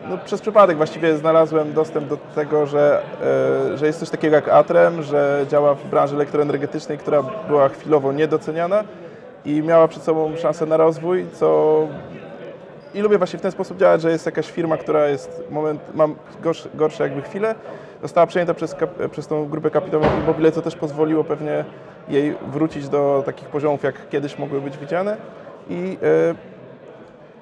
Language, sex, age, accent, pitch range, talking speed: Polish, male, 20-39, native, 150-185 Hz, 165 wpm